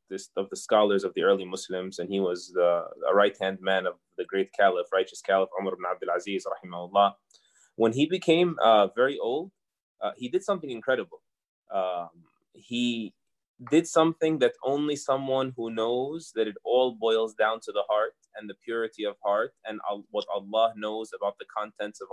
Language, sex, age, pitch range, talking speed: English, male, 20-39, 105-140 Hz, 180 wpm